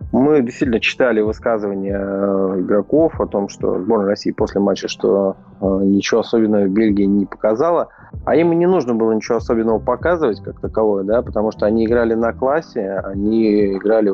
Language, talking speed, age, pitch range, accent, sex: Russian, 160 wpm, 20-39, 100-115 Hz, native, male